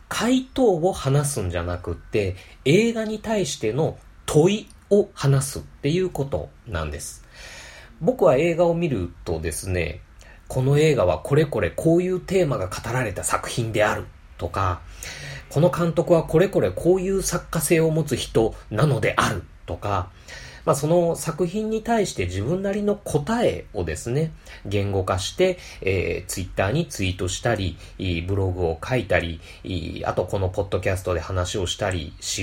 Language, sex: Japanese, male